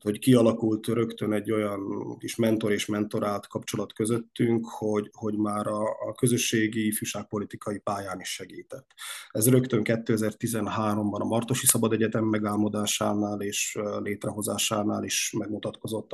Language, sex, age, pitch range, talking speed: Hungarian, male, 20-39, 105-120 Hz, 125 wpm